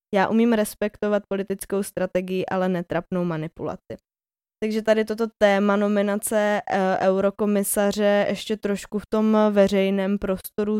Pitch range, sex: 185-205 Hz, female